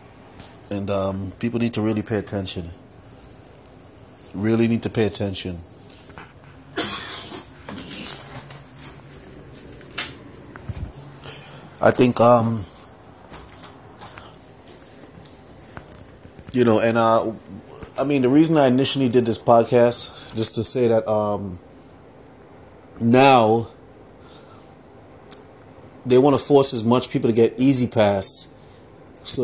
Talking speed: 95 wpm